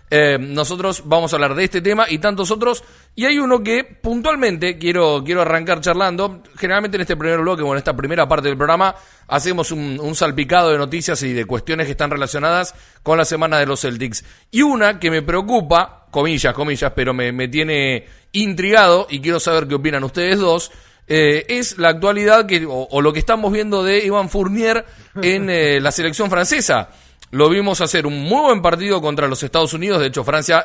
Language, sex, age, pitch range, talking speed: Spanish, male, 40-59, 145-190 Hz, 200 wpm